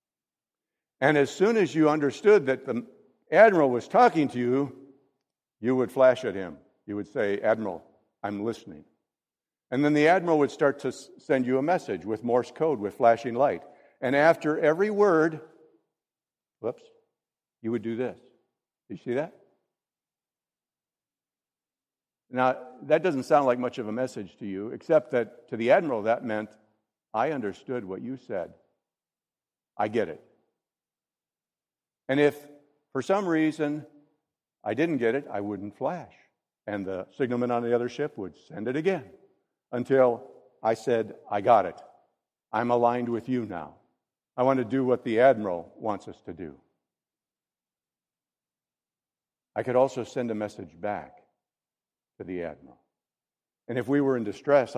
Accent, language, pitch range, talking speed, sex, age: American, English, 115-150 Hz, 155 wpm, male, 60-79